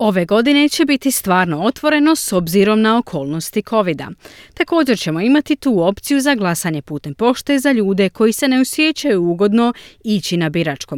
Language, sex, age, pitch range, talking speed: Croatian, female, 30-49, 165-240 Hz, 165 wpm